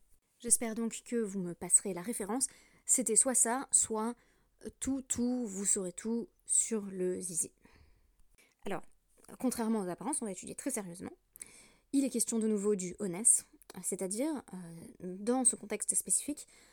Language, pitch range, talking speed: French, 180-230 Hz, 150 wpm